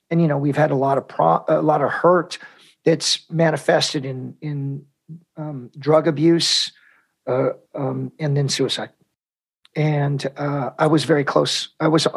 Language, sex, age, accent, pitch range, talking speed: English, male, 40-59, American, 140-160 Hz, 165 wpm